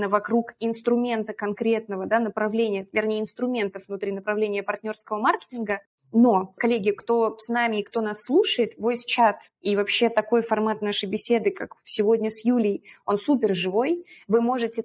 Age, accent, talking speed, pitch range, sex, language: 20-39, native, 145 wpm, 205-235 Hz, female, Russian